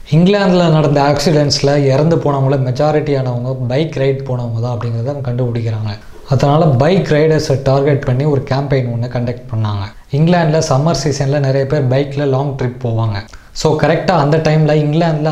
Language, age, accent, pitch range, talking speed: Tamil, 20-39, native, 125-150 Hz, 135 wpm